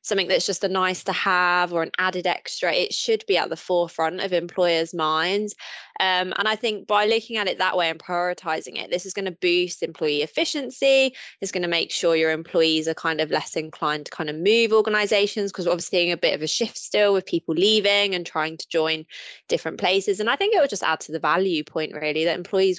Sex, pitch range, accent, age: female, 170-215 Hz, British, 20-39